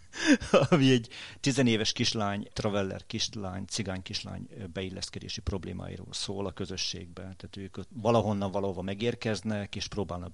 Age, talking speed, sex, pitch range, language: 50-69, 115 wpm, male, 95-110 Hz, Hungarian